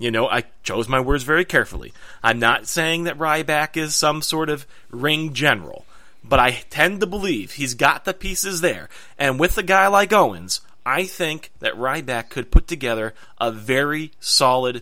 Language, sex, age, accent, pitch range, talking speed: English, male, 30-49, American, 125-170 Hz, 180 wpm